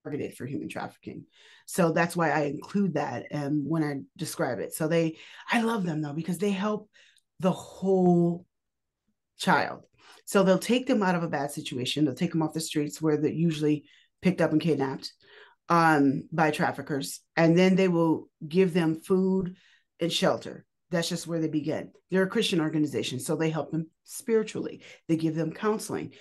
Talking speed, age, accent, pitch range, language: 180 wpm, 30-49, American, 155-190 Hz, English